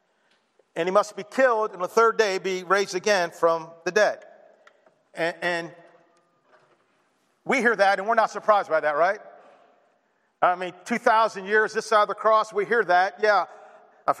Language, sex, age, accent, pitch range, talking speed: English, male, 40-59, American, 180-225 Hz, 175 wpm